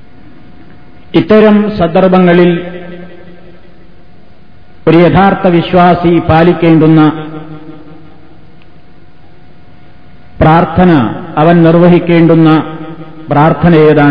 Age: 50-69